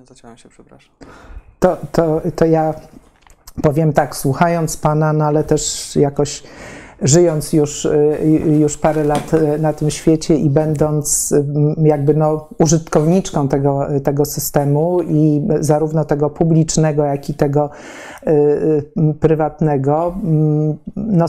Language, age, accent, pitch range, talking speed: Polish, 50-69, native, 145-155 Hz, 105 wpm